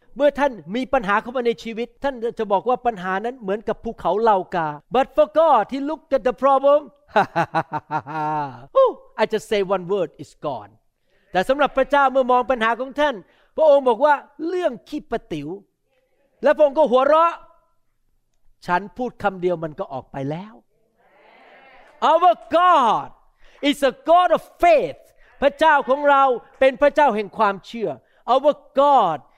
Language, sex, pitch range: Thai, male, 215-295 Hz